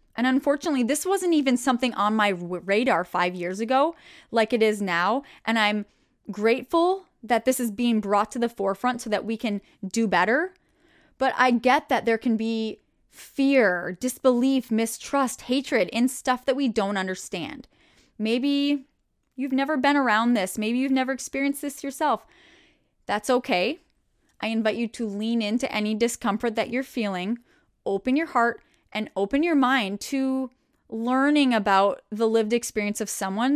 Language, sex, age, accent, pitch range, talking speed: English, female, 10-29, American, 215-265 Hz, 160 wpm